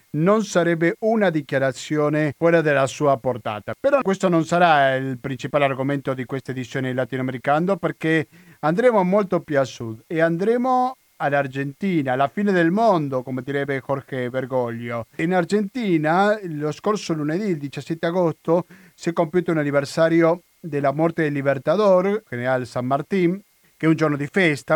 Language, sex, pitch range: Italian, male, 135-175 Hz